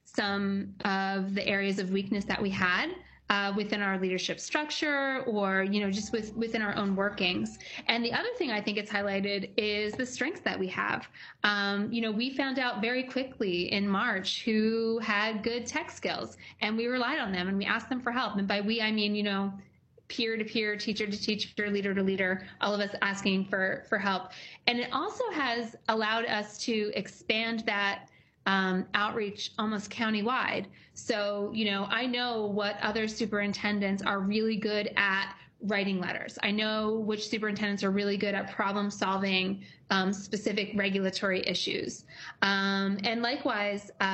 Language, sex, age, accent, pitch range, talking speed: English, female, 20-39, American, 195-225 Hz, 165 wpm